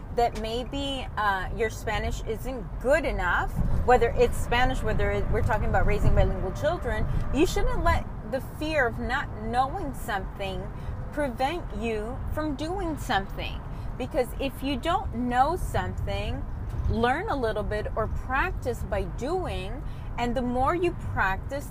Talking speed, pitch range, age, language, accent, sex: 140 wpm, 180-275 Hz, 30-49, English, American, female